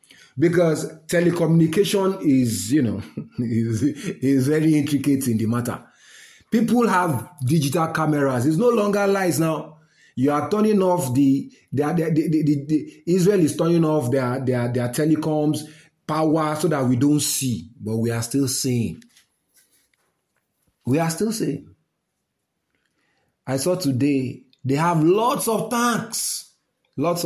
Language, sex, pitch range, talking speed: English, male, 125-175 Hz, 140 wpm